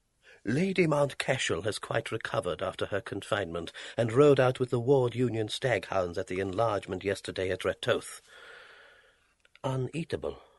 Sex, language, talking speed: male, English, 140 wpm